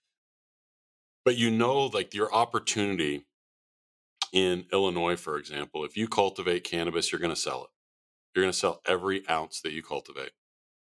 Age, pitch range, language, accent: 40-59, 80-100 Hz, English, American